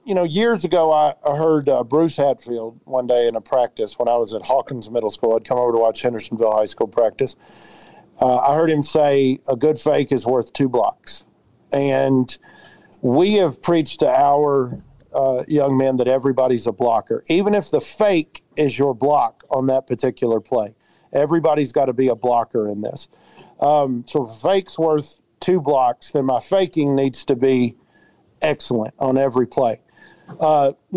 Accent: American